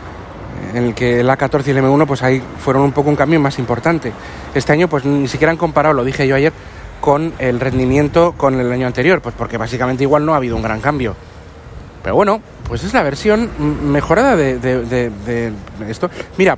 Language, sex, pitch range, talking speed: Spanish, male, 120-150 Hz, 210 wpm